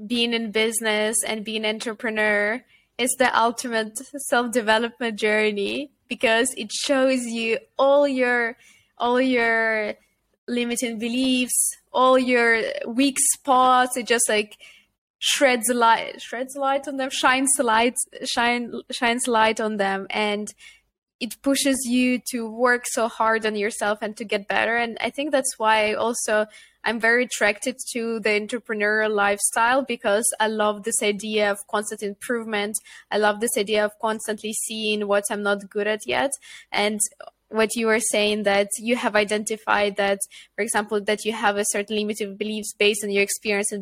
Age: 20-39